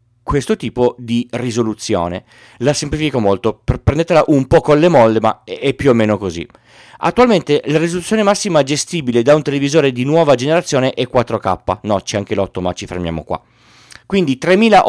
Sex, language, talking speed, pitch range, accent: male, Italian, 165 wpm, 115-155 Hz, native